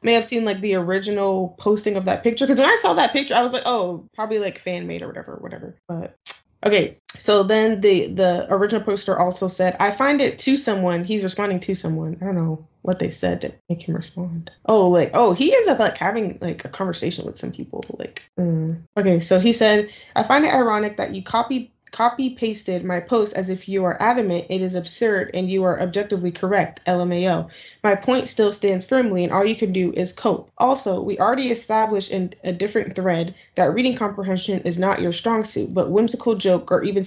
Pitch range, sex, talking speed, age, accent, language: 180-220 Hz, female, 215 wpm, 10-29, American, English